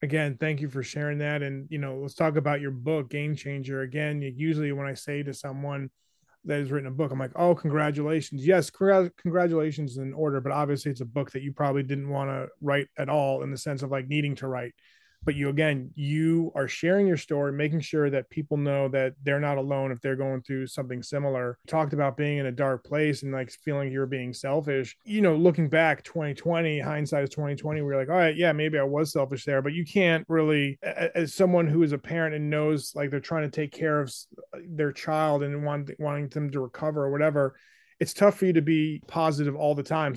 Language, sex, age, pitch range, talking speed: English, male, 30-49, 140-155 Hz, 225 wpm